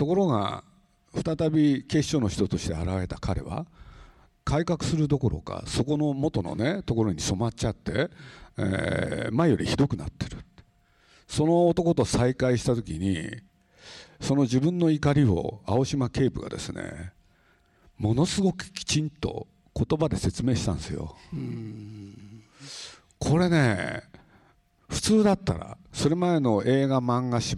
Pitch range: 110-155 Hz